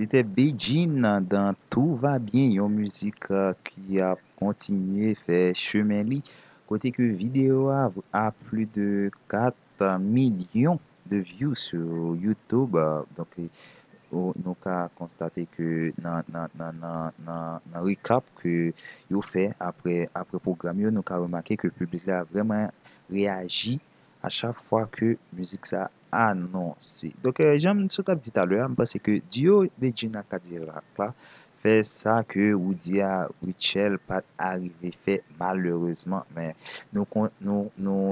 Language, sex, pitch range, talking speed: French, male, 90-110 Hz, 145 wpm